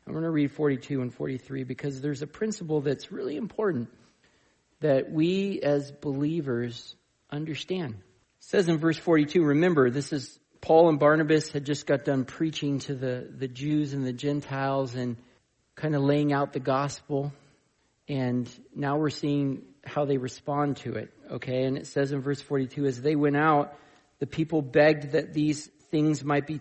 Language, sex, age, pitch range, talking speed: English, male, 40-59, 140-165 Hz, 175 wpm